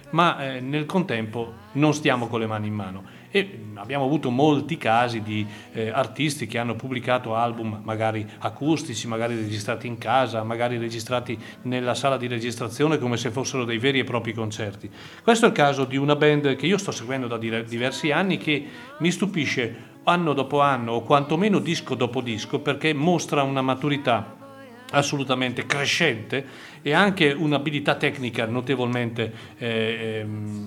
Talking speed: 155 wpm